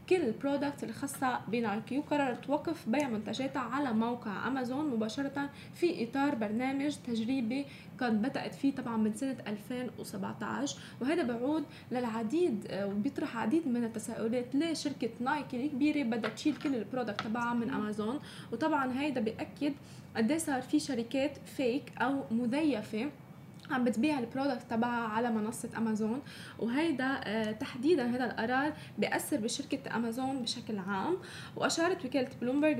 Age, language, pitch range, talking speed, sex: 10-29, Arabic, 225-280 Hz, 130 wpm, female